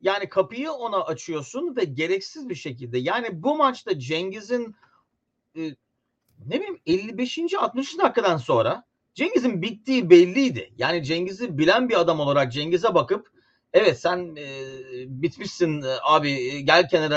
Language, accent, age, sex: Turkish, native, 40-59, male